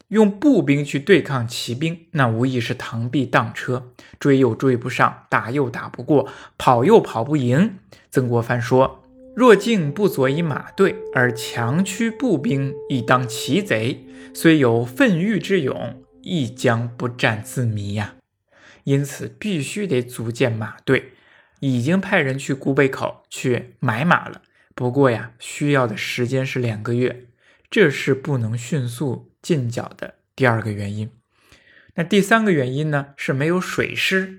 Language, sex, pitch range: Chinese, male, 120-165 Hz